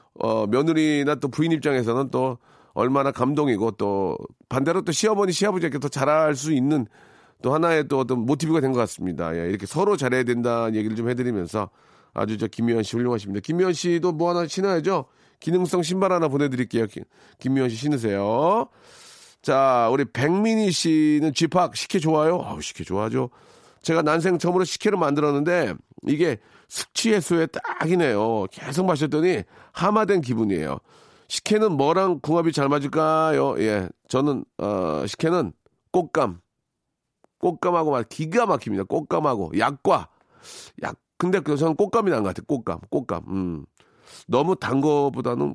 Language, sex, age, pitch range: Korean, male, 40-59, 120-175 Hz